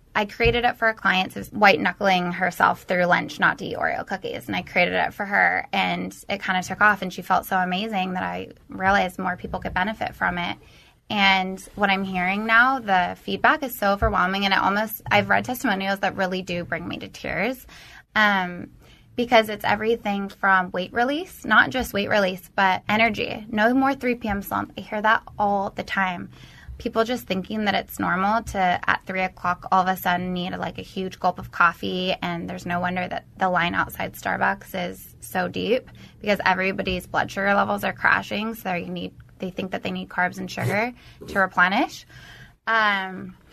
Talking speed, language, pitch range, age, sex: 195 wpm, English, 185-220 Hz, 20-39, female